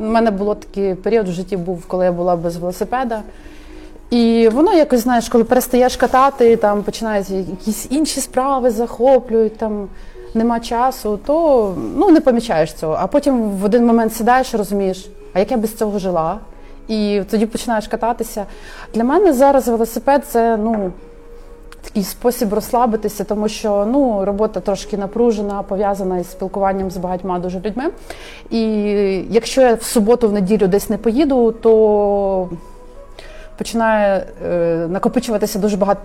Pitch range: 200-240 Hz